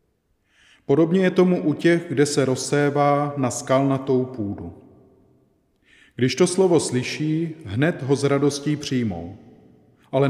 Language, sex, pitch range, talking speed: Czech, male, 115-145 Hz, 120 wpm